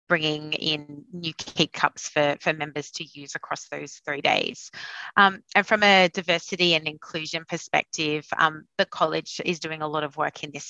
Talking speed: 185 wpm